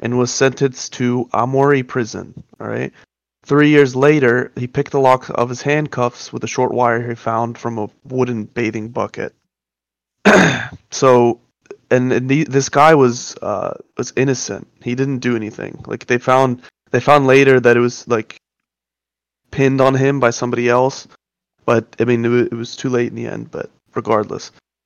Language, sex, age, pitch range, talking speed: English, male, 20-39, 120-135 Hz, 165 wpm